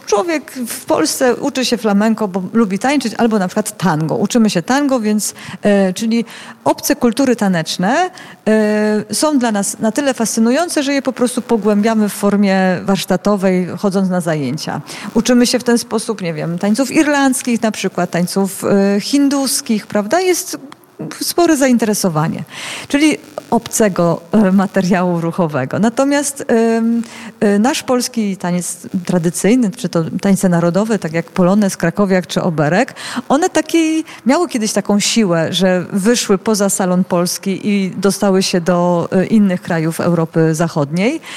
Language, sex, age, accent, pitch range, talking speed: Polish, female, 40-59, native, 190-245 Hz, 140 wpm